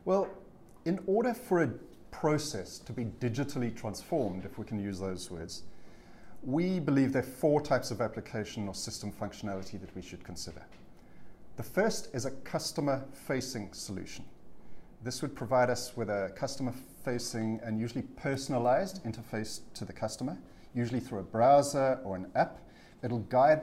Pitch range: 110-140 Hz